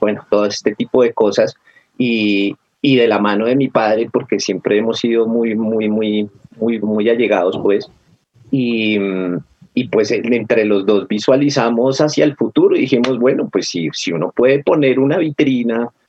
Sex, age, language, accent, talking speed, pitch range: male, 30-49, English, Colombian, 170 wpm, 100-120 Hz